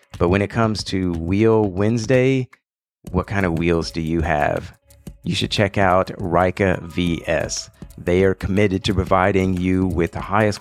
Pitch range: 85-105 Hz